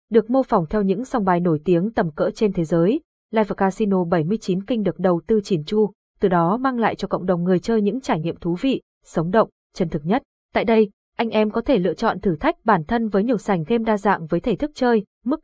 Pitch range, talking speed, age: 185-240 Hz, 255 wpm, 20-39